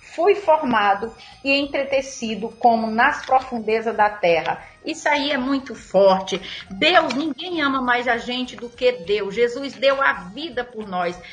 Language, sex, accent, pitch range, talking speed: Portuguese, female, Brazilian, 235-285 Hz, 155 wpm